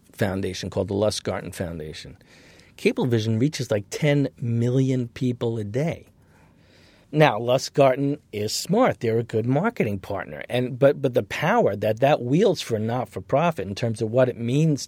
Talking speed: 160 wpm